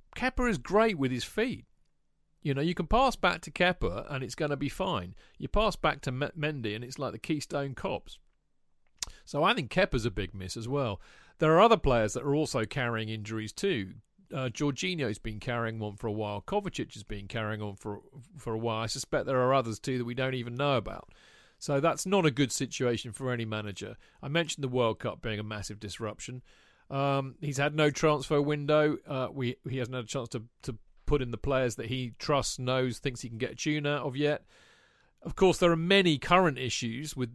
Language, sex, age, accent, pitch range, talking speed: English, male, 40-59, British, 115-150 Hz, 220 wpm